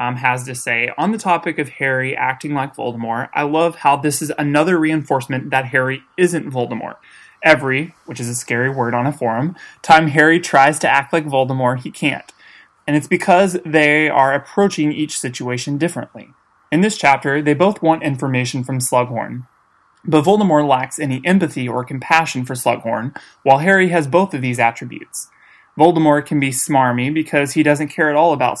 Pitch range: 125-155 Hz